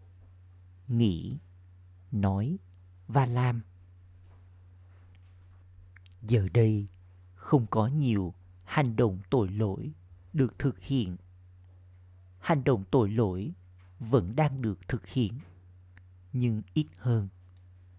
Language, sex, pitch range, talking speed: Vietnamese, male, 90-120 Hz, 95 wpm